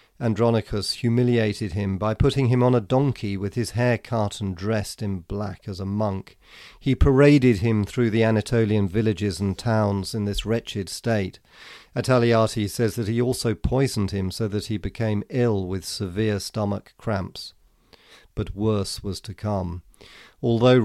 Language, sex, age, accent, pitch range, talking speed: English, male, 40-59, British, 100-120 Hz, 160 wpm